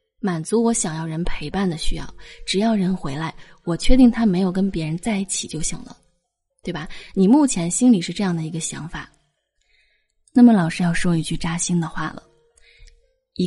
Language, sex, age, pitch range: Chinese, female, 20-39, 170-240 Hz